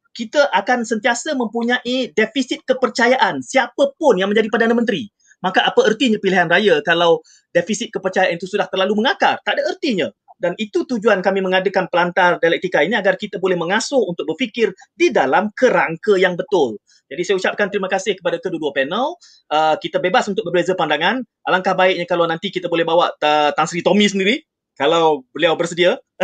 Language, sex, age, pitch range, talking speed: Malay, male, 30-49, 175-230 Hz, 170 wpm